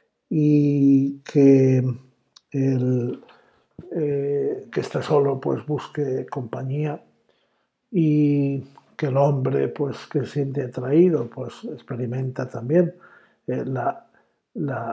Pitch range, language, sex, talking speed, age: 130-150 Hz, Spanish, male, 95 wpm, 60-79